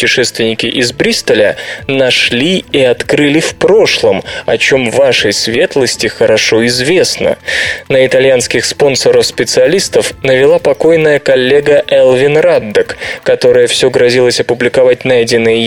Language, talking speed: Russian, 105 wpm